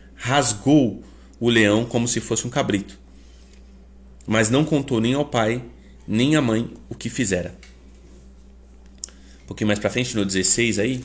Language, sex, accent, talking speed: Portuguese, male, Brazilian, 150 wpm